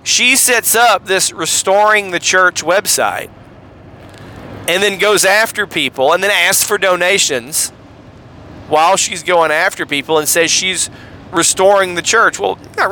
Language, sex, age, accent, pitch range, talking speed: English, male, 40-59, American, 130-205 Hz, 145 wpm